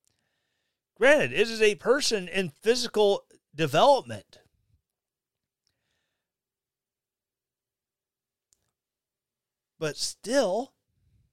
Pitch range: 125-195 Hz